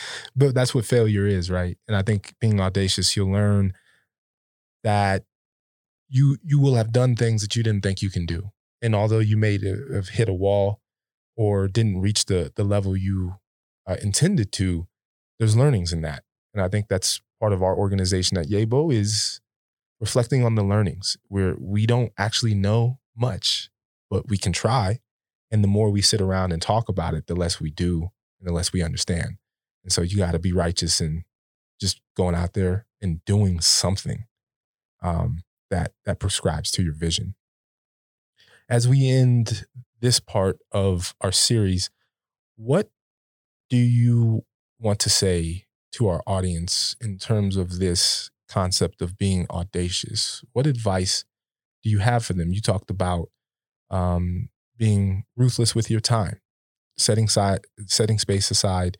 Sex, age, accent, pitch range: male, 20-39, American, 95-115 Hz